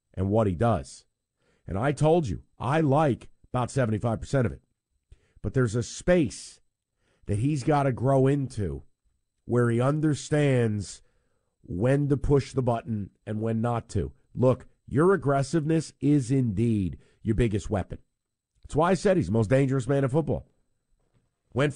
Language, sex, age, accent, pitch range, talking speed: English, male, 50-69, American, 100-135 Hz, 155 wpm